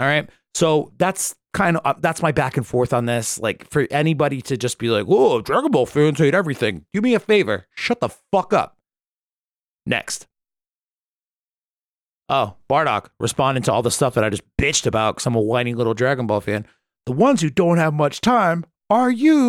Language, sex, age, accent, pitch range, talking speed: English, male, 30-49, American, 110-145 Hz, 195 wpm